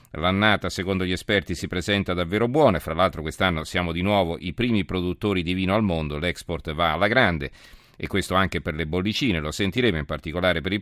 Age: 40-59